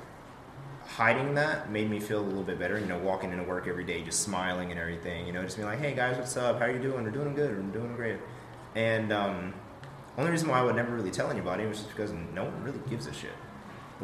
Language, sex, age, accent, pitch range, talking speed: English, male, 20-39, American, 95-120 Hz, 260 wpm